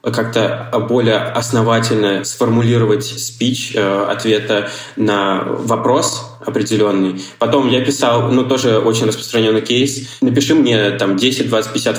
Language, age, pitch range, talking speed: Russian, 20-39, 105-125 Hz, 110 wpm